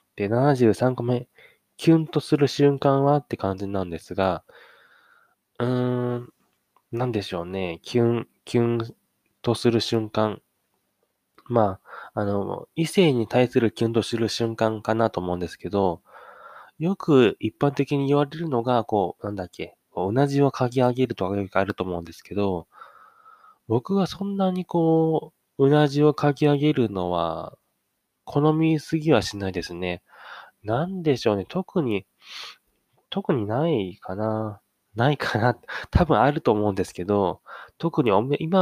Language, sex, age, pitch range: Japanese, male, 20-39, 100-145 Hz